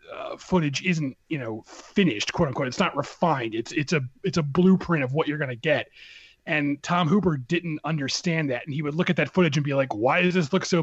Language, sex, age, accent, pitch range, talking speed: English, male, 30-49, American, 140-175 Hz, 240 wpm